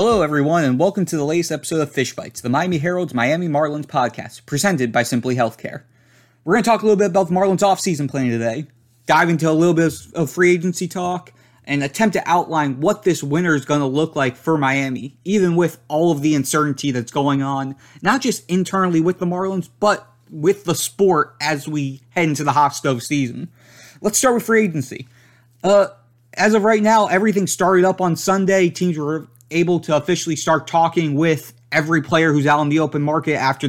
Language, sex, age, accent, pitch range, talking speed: English, male, 30-49, American, 135-175 Hz, 205 wpm